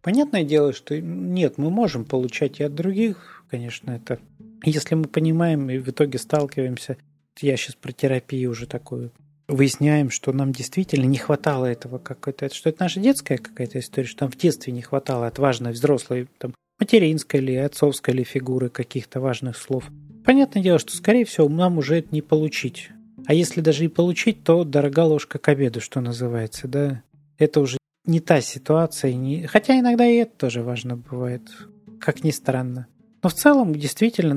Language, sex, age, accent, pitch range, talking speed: Russian, male, 30-49, native, 130-165 Hz, 170 wpm